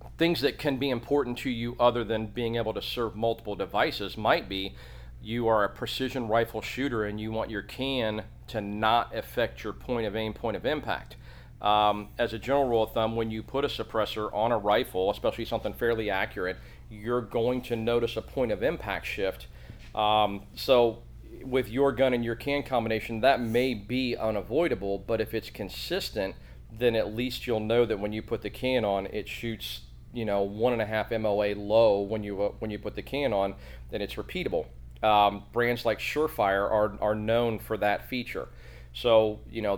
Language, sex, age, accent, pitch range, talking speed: English, male, 40-59, American, 100-120 Hz, 195 wpm